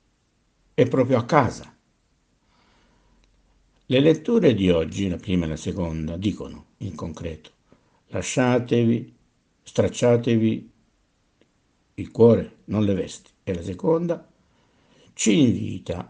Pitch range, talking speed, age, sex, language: 85-120 Hz, 105 wpm, 60-79, male, Italian